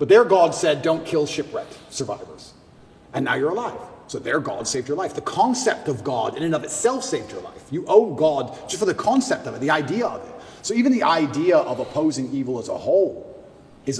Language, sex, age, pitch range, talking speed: Swedish, male, 30-49, 125-190 Hz, 225 wpm